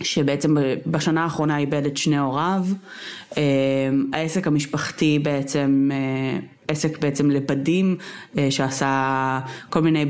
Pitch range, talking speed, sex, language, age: 145-200 Hz, 95 wpm, female, Hebrew, 20-39